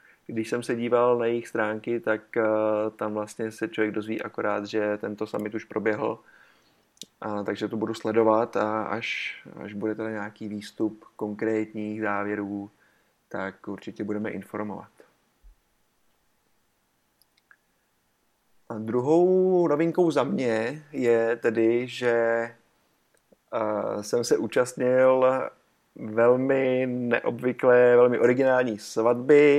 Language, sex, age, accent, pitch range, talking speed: Czech, male, 30-49, native, 110-120 Hz, 105 wpm